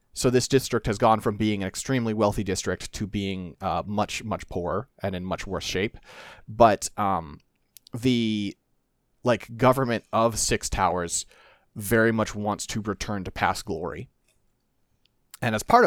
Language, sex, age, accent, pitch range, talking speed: English, male, 30-49, American, 100-120 Hz, 155 wpm